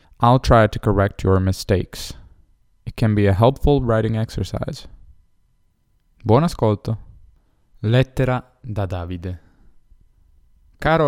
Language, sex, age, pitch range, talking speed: Italian, male, 10-29, 90-120 Hz, 105 wpm